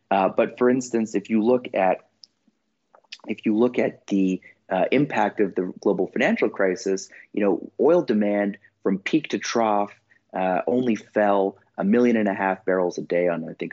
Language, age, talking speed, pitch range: English, 30-49, 185 wpm, 95-110 Hz